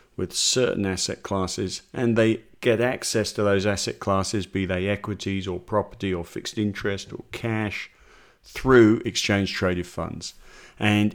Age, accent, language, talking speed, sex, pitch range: 50-69, British, English, 145 wpm, male, 100-120 Hz